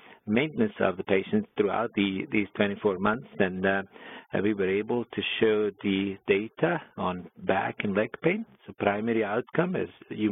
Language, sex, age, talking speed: English, male, 50-69, 155 wpm